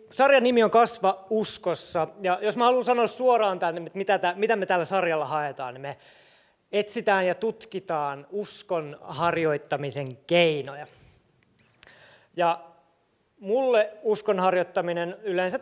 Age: 30-49